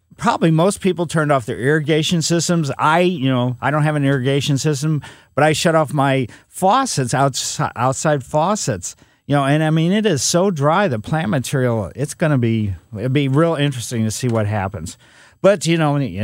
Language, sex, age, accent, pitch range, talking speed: English, male, 50-69, American, 125-175 Hz, 200 wpm